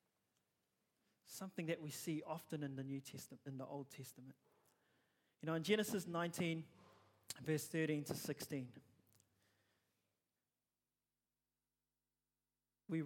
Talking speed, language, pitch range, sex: 100 wpm, English, 130-160 Hz, male